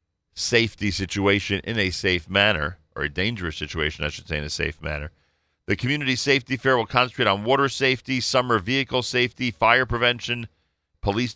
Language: English